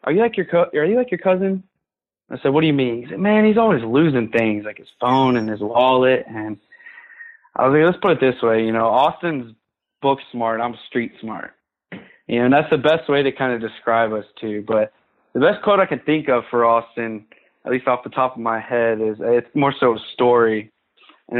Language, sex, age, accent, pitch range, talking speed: English, male, 20-39, American, 115-140 Hz, 235 wpm